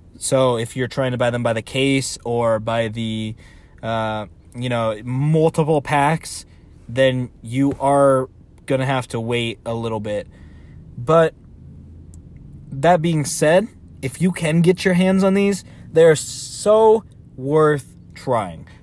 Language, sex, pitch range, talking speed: English, male, 110-155 Hz, 140 wpm